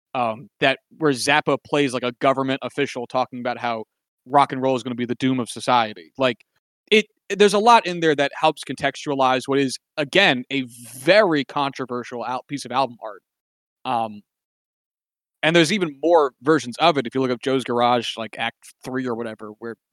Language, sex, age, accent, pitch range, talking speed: English, male, 20-39, American, 125-155 Hz, 200 wpm